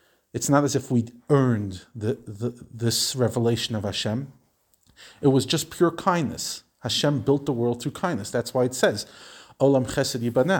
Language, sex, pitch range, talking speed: English, male, 120-140 Hz, 170 wpm